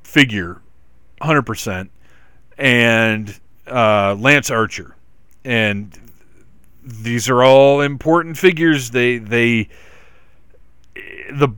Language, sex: English, male